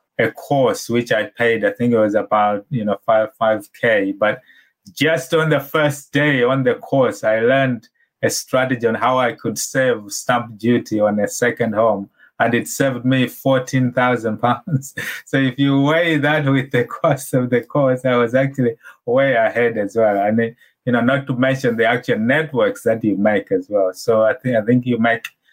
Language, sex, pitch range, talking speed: English, male, 110-140 Hz, 205 wpm